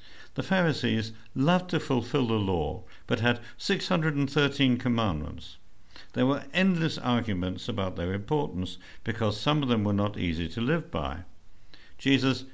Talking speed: 140 wpm